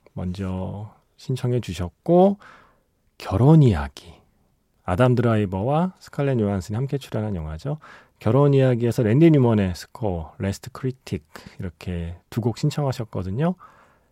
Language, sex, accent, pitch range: Korean, male, native, 95-130 Hz